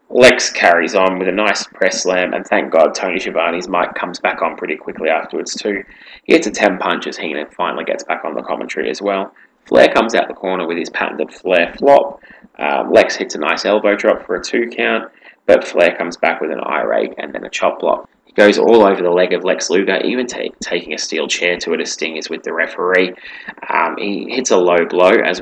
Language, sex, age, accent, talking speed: English, male, 20-39, Australian, 235 wpm